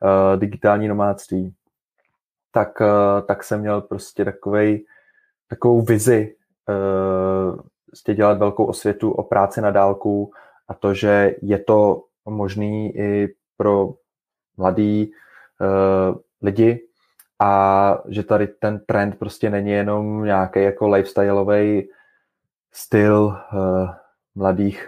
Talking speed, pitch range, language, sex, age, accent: 110 wpm, 100-110 Hz, Czech, male, 20-39, native